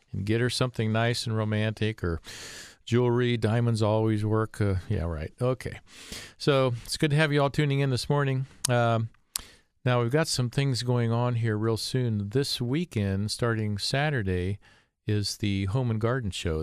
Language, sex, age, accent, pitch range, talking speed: English, male, 50-69, American, 100-120 Hz, 175 wpm